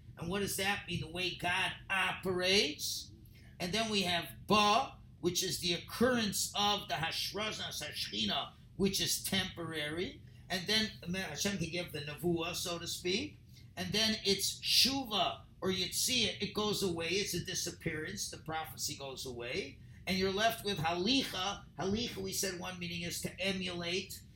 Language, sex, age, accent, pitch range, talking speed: English, male, 50-69, American, 150-200 Hz, 160 wpm